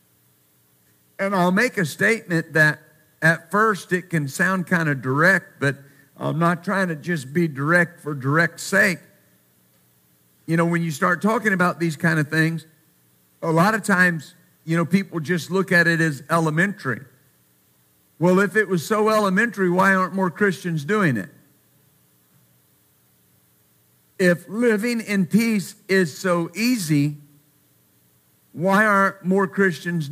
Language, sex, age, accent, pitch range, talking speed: English, male, 50-69, American, 130-195 Hz, 145 wpm